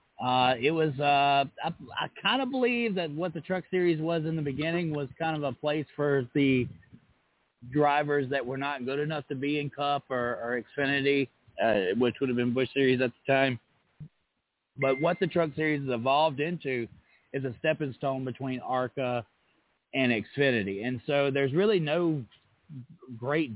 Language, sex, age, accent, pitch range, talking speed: English, male, 30-49, American, 125-160 Hz, 180 wpm